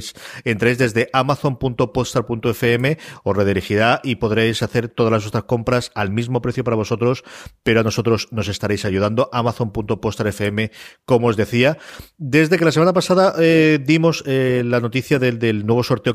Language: English